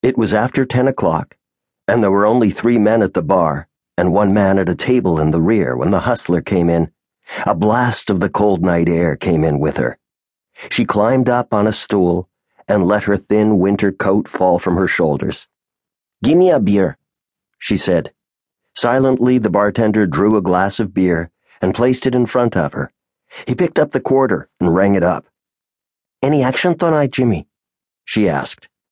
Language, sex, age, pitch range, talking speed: English, male, 50-69, 90-110 Hz, 185 wpm